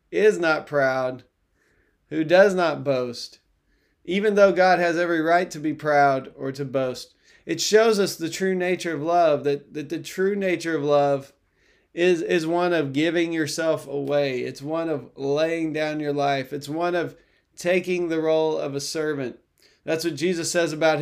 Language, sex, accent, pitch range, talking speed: English, male, American, 145-175 Hz, 175 wpm